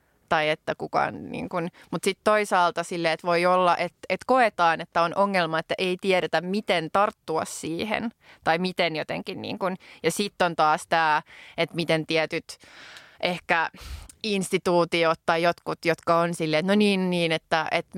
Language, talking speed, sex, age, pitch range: Finnish, 165 wpm, female, 20-39, 160-190 Hz